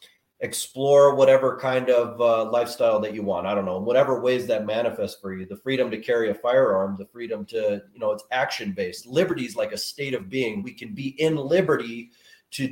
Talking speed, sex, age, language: 210 wpm, male, 30-49, English